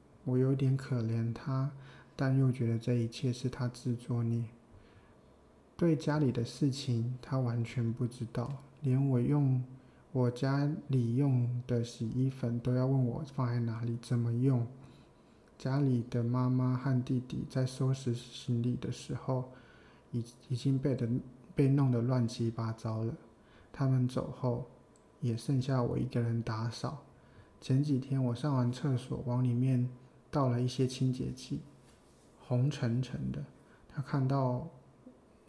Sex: male